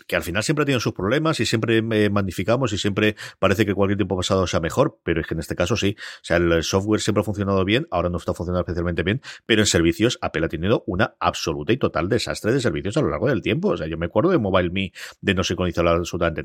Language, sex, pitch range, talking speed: Spanish, male, 95-125 Hz, 260 wpm